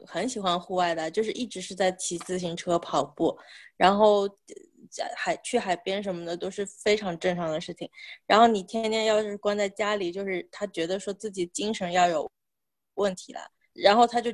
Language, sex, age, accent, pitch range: Chinese, female, 20-39, native, 175-220 Hz